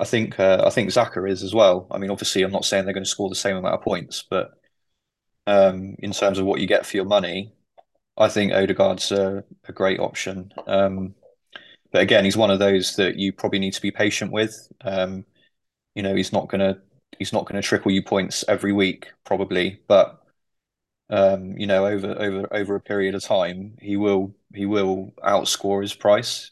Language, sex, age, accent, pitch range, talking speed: English, male, 20-39, British, 95-105 Hz, 205 wpm